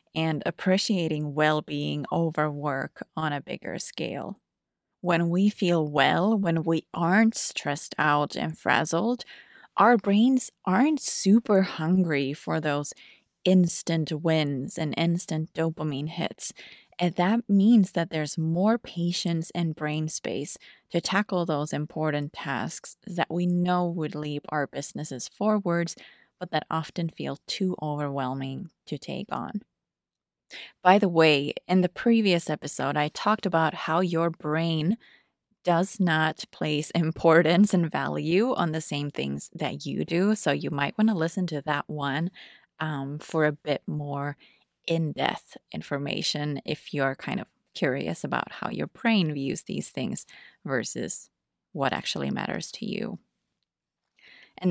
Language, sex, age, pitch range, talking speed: English, female, 20-39, 150-185 Hz, 140 wpm